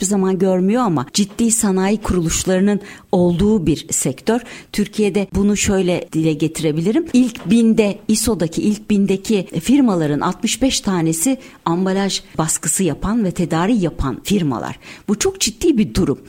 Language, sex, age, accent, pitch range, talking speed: Turkish, female, 60-79, native, 160-225 Hz, 125 wpm